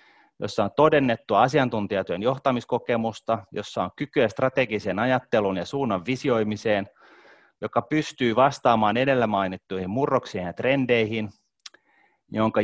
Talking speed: 105 wpm